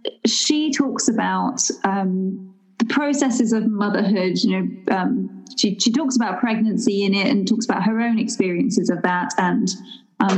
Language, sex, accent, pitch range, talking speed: English, female, British, 195-230 Hz, 160 wpm